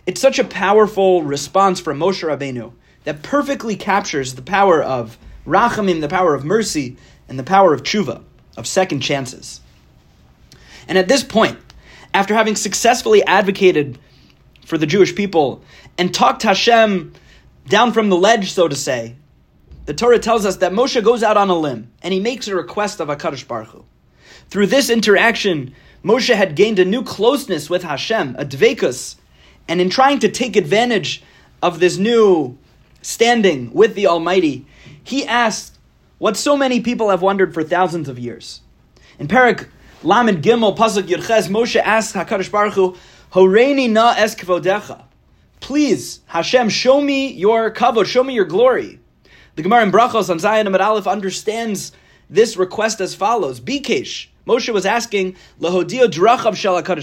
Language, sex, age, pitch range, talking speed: English, male, 30-49, 175-230 Hz, 155 wpm